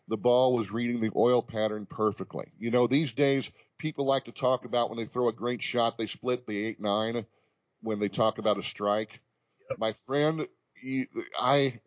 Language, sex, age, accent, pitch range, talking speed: English, male, 40-59, American, 110-135 Hz, 185 wpm